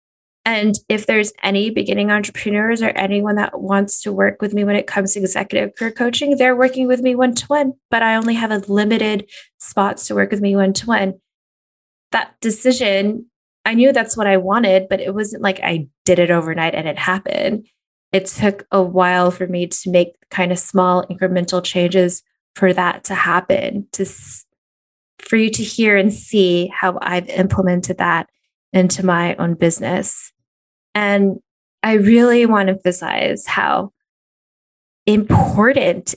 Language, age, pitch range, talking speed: English, 20-39, 185-230 Hz, 170 wpm